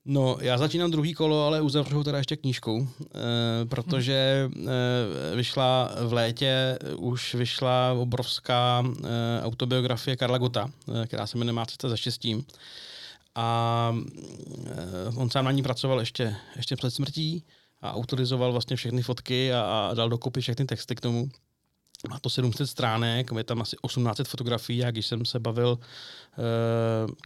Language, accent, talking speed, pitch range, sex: Czech, native, 150 wpm, 120-135 Hz, male